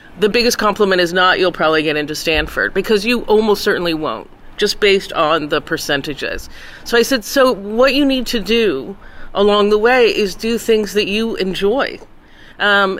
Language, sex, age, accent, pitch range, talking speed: English, female, 40-59, American, 170-230 Hz, 180 wpm